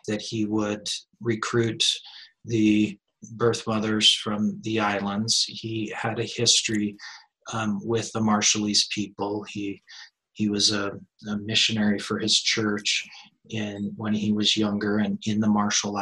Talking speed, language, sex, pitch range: 140 wpm, English, male, 100-110 Hz